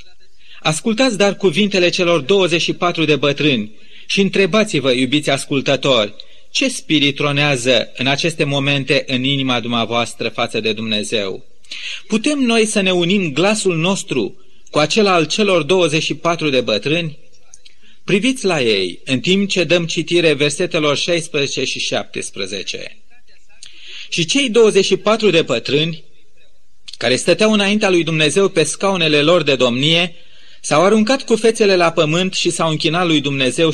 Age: 30-49